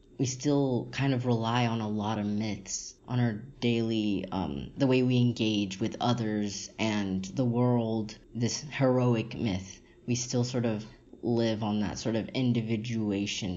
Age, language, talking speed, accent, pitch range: 20-39, English, 160 wpm, American, 105-125 Hz